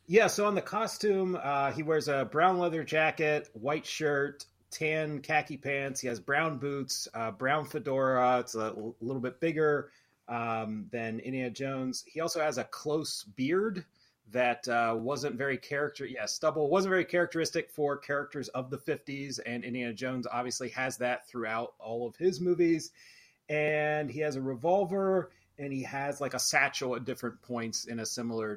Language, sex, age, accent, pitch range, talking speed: English, male, 30-49, American, 125-155 Hz, 175 wpm